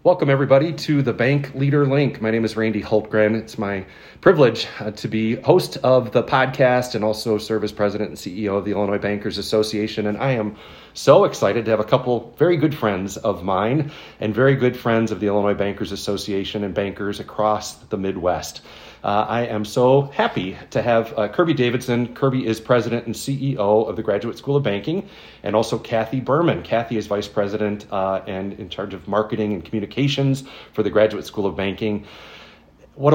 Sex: male